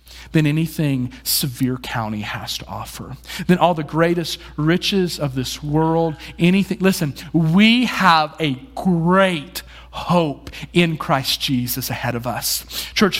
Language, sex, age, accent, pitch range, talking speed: English, male, 40-59, American, 135-210 Hz, 130 wpm